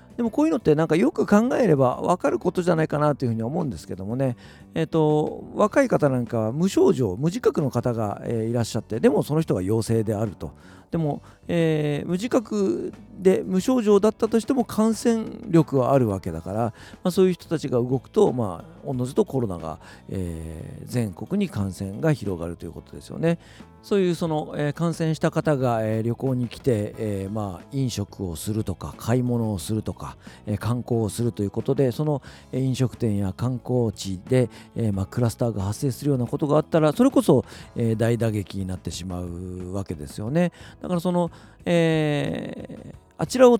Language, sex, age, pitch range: Japanese, male, 40-59, 105-160 Hz